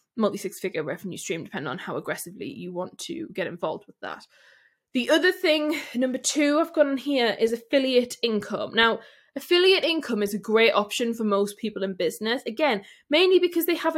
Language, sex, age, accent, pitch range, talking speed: English, female, 10-29, British, 200-275 Hz, 195 wpm